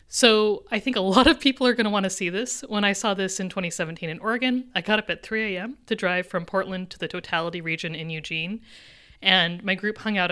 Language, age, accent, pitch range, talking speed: English, 30-49, American, 185-245 Hz, 250 wpm